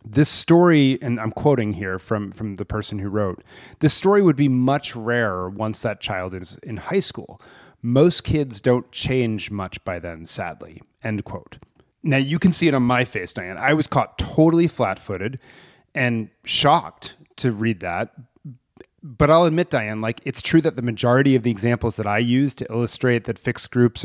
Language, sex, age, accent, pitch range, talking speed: English, male, 30-49, American, 110-135 Hz, 185 wpm